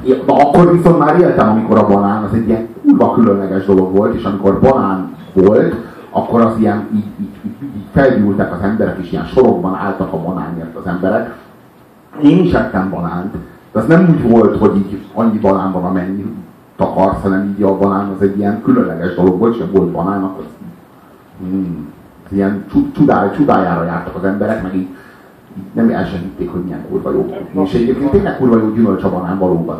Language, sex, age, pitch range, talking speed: Hungarian, male, 40-59, 95-140 Hz, 185 wpm